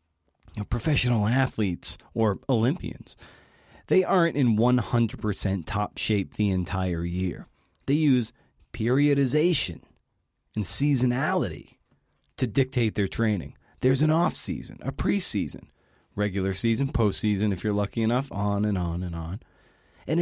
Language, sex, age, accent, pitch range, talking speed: English, male, 30-49, American, 95-125 Hz, 115 wpm